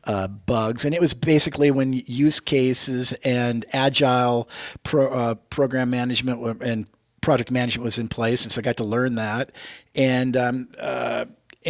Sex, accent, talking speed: male, American, 165 wpm